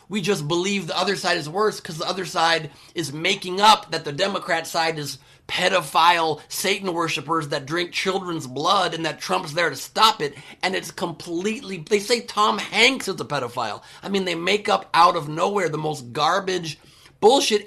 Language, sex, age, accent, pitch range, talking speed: English, male, 30-49, American, 155-205 Hz, 185 wpm